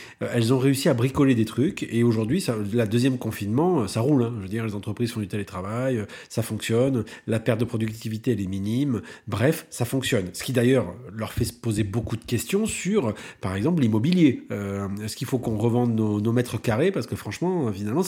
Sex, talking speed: male, 210 wpm